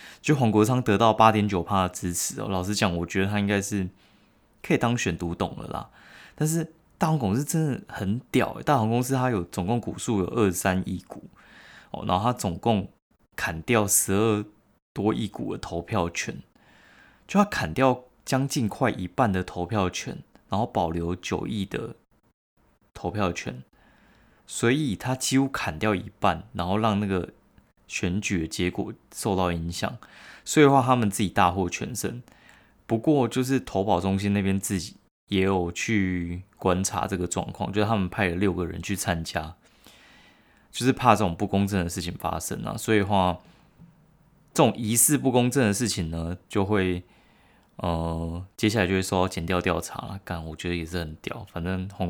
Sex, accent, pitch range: male, native, 90-115 Hz